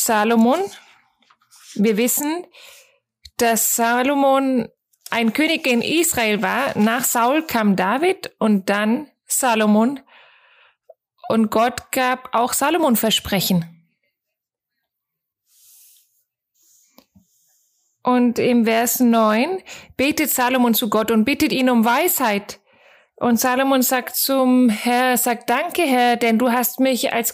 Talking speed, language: 110 wpm, German